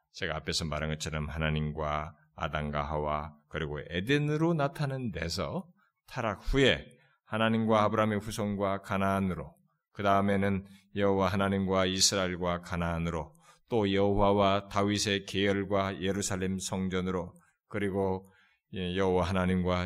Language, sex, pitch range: Korean, male, 90-140 Hz